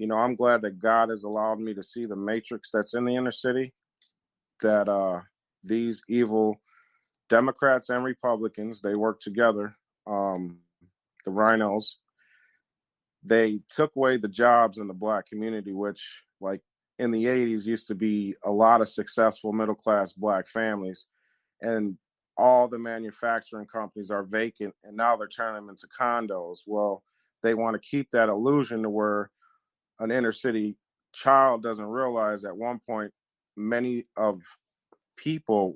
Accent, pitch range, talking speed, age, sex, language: American, 105-120 Hz, 150 wpm, 30-49, male, English